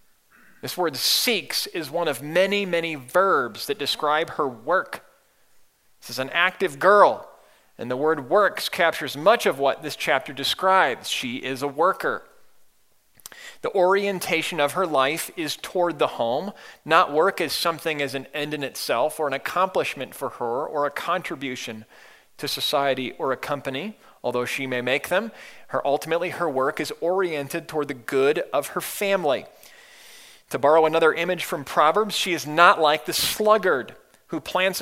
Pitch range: 145-190 Hz